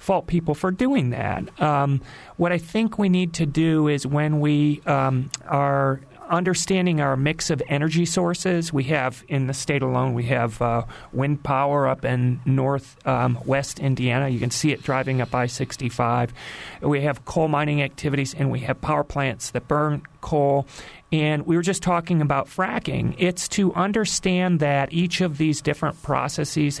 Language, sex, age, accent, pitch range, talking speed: English, male, 40-59, American, 135-170 Hz, 170 wpm